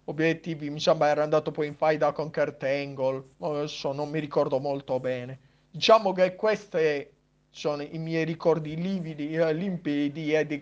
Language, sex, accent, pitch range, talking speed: Italian, male, native, 150-185 Hz, 160 wpm